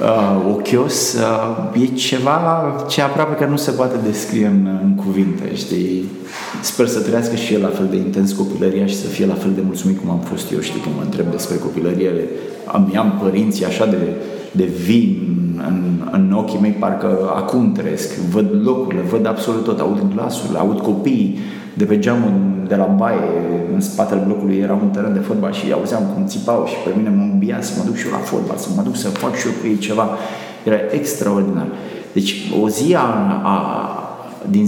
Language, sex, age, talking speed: Romanian, male, 30-49, 195 wpm